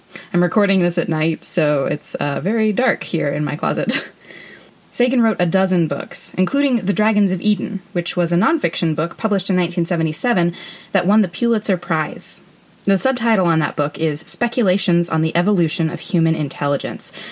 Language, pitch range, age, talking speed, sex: English, 160-200 Hz, 20-39, 175 wpm, female